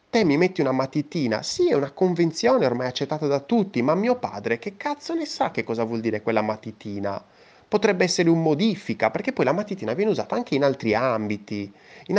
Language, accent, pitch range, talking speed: Italian, native, 110-170 Hz, 195 wpm